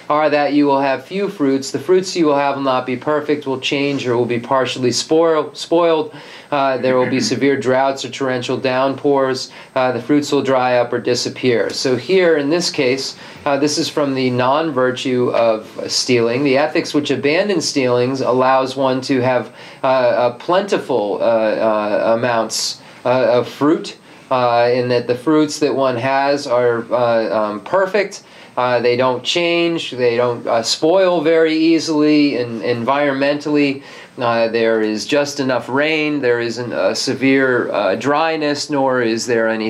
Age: 40-59